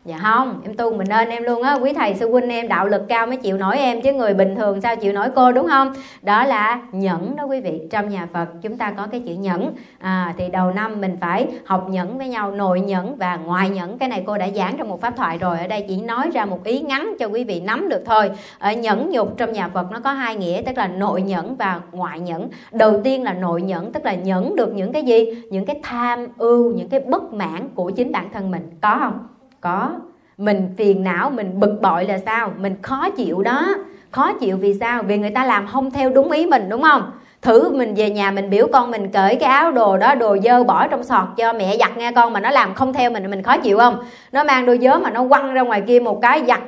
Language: Vietnamese